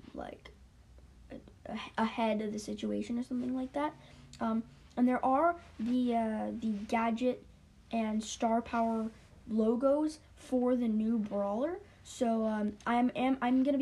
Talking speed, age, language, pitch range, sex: 130 wpm, 10-29, English, 220-255 Hz, female